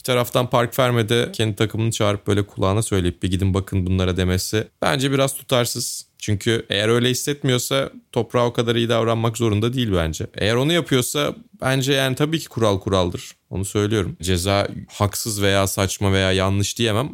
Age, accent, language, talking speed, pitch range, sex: 30-49, native, Turkish, 165 wpm, 95-130 Hz, male